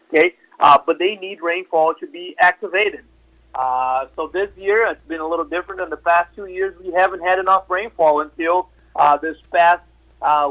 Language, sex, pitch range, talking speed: English, male, 155-190 Hz, 190 wpm